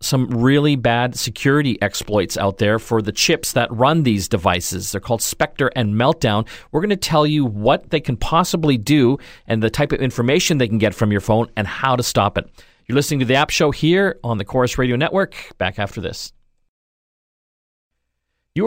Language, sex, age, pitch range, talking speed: English, male, 40-59, 110-140 Hz, 195 wpm